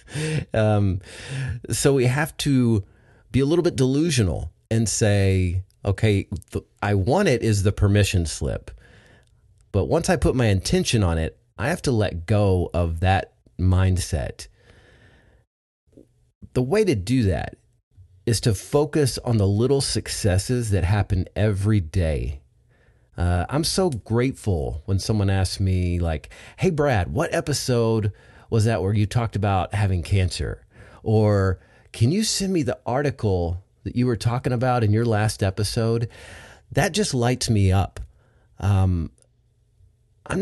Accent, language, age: American, English, 30-49